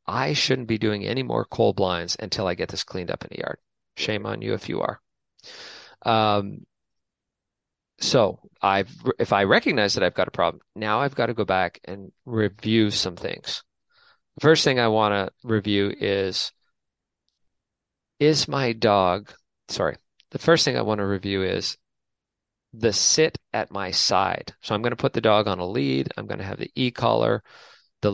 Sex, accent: male, American